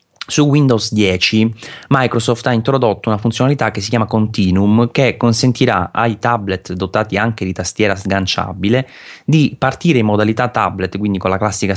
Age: 30-49